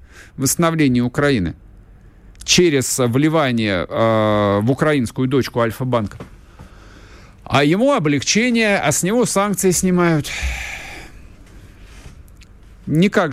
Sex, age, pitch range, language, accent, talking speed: male, 50-69, 95-150 Hz, Russian, native, 80 wpm